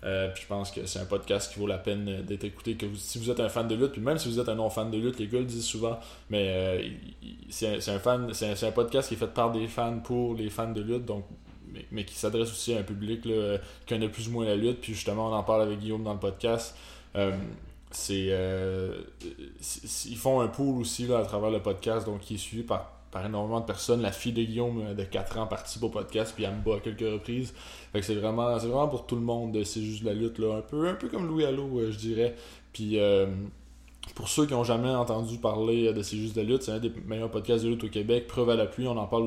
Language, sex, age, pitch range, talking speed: French, male, 20-39, 100-115 Hz, 275 wpm